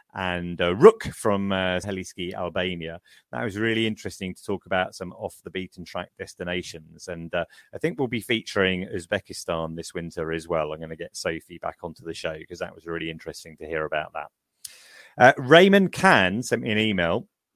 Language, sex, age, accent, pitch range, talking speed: English, male, 30-49, British, 90-120 Hz, 180 wpm